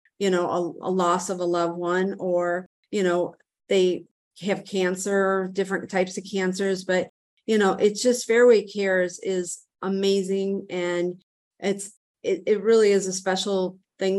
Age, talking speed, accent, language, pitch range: 40-59, 155 wpm, American, English, 185-210 Hz